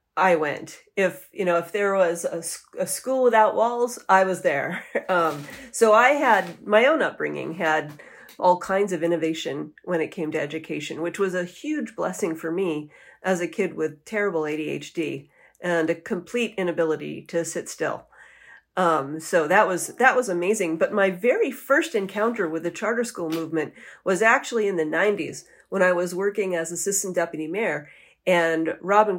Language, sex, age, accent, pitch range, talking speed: English, female, 40-59, American, 165-205 Hz, 175 wpm